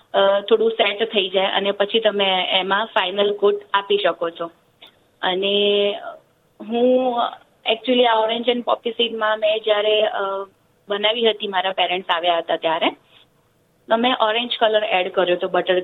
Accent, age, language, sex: native, 20-39, Gujarati, female